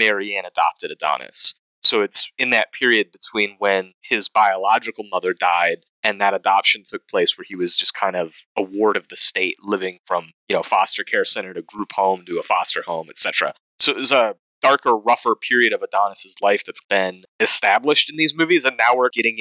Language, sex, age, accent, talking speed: English, male, 30-49, American, 200 wpm